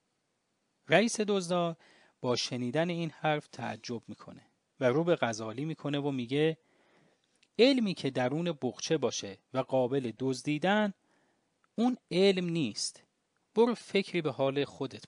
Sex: male